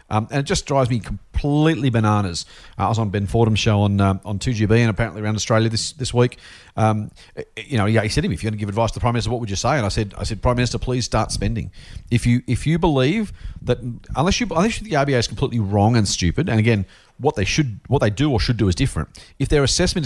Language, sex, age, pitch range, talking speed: English, male, 40-59, 100-130 Hz, 270 wpm